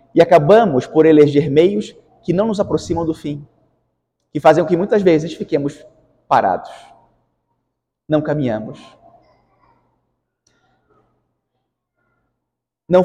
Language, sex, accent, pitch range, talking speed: Portuguese, male, Brazilian, 150-190 Hz, 100 wpm